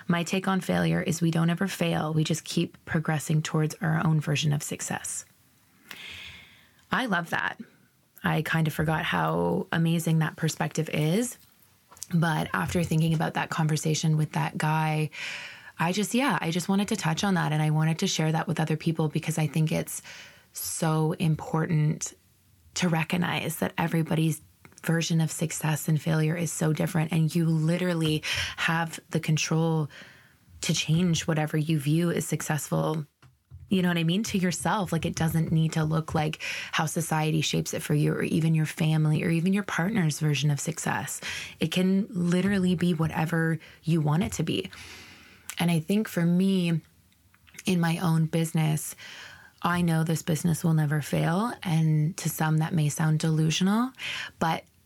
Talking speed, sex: 170 wpm, female